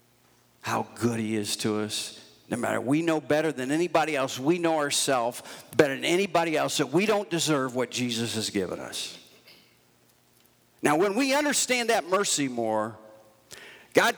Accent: American